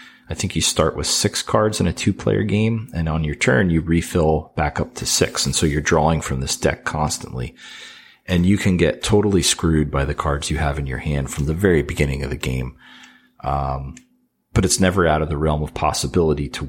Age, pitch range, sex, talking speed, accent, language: 40-59, 70-90 Hz, male, 220 wpm, American, English